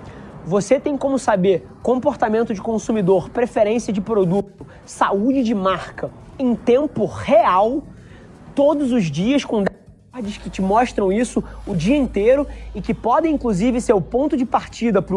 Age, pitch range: 20-39, 185-230 Hz